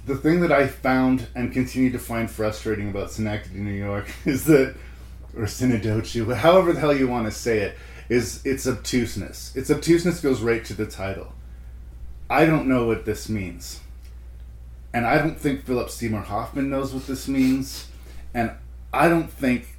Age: 40-59